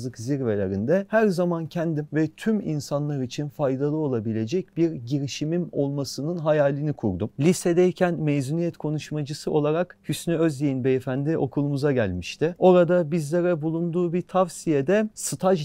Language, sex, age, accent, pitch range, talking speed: Turkish, male, 40-59, native, 135-170 Hz, 115 wpm